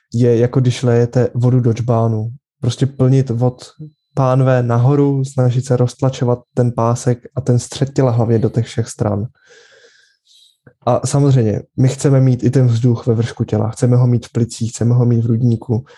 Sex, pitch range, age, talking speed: male, 120-135 Hz, 20-39, 175 wpm